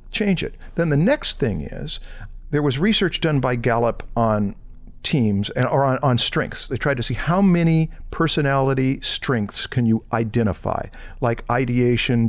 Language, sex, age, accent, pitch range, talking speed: English, male, 50-69, American, 110-145 Hz, 155 wpm